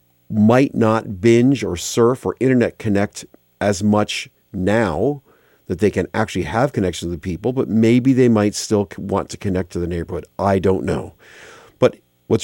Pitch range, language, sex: 90-115 Hz, English, male